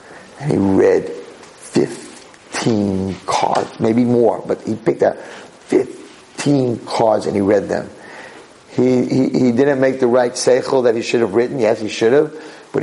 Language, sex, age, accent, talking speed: English, male, 50-69, American, 165 wpm